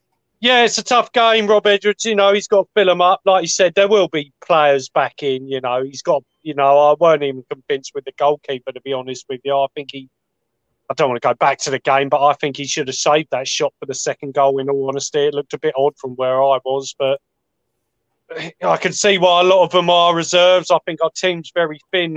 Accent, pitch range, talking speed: British, 145-190 Hz, 260 wpm